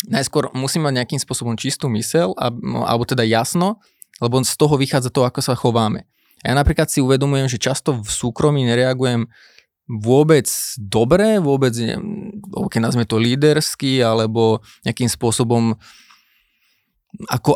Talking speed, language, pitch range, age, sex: 135 wpm, Slovak, 120-150 Hz, 20-39, male